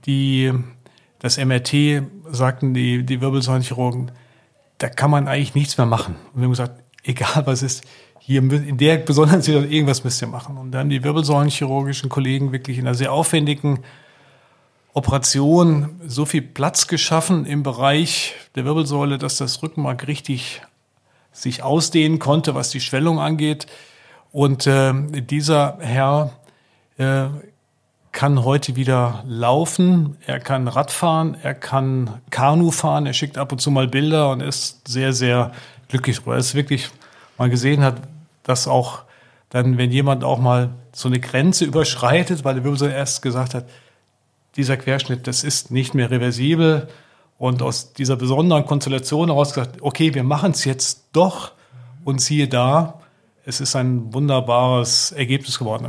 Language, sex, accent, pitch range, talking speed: German, male, German, 130-150 Hz, 150 wpm